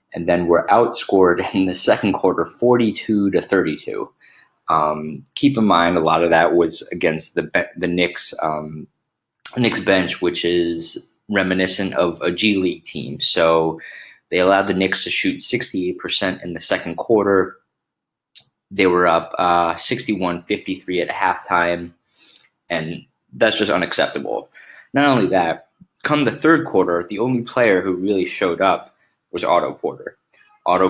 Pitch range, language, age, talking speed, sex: 85-110 Hz, English, 20-39, 150 wpm, male